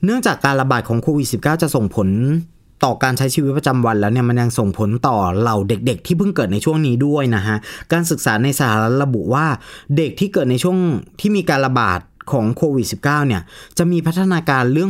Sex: male